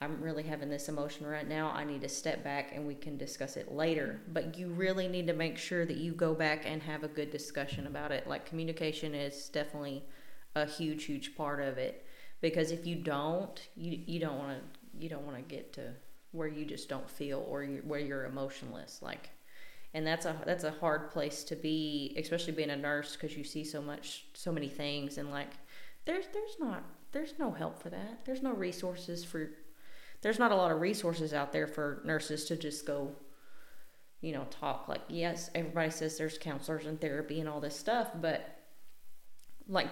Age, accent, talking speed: 30-49, American, 205 wpm